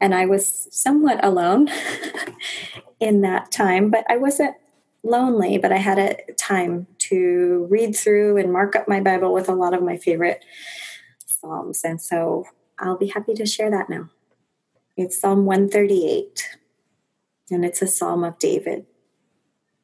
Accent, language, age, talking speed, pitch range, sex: American, English, 20-39, 150 wpm, 180-210 Hz, female